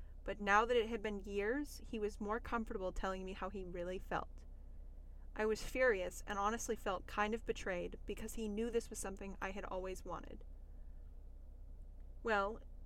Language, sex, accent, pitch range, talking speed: English, female, American, 175-220 Hz, 175 wpm